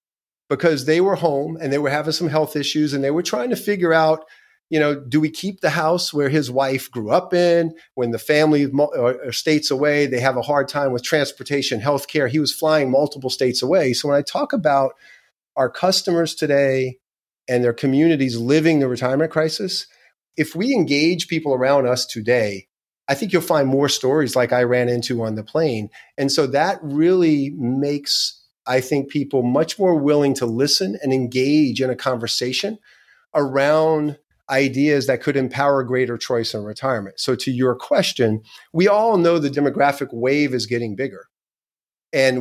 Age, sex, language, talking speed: 40-59, male, English, 180 wpm